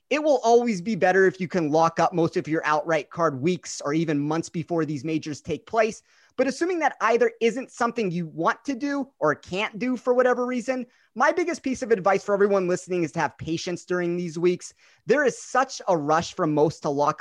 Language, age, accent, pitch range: English, 30-49, American, 160-220 Hz